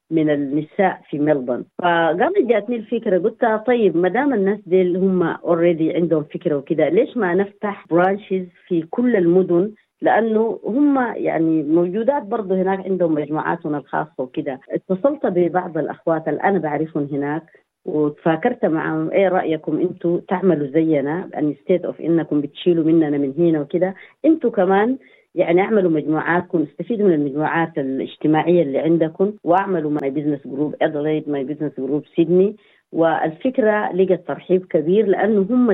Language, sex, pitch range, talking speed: Arabic, female, 155-195 Hz, 140 wpm